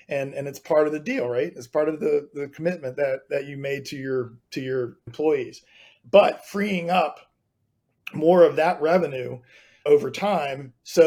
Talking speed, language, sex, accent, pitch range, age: 180 wpm, English, male, American, 140-180 Hz, 40-59